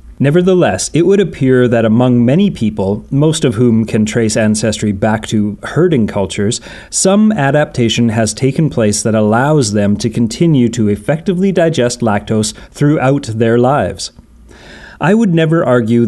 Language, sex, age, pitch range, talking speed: English, male, 30-49, 110-150 Hz, 145 wpm